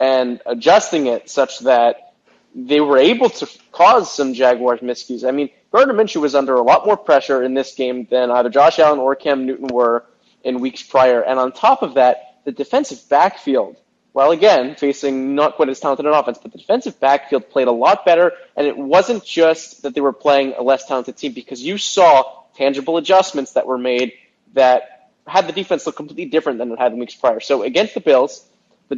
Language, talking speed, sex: English, 205 wpm, male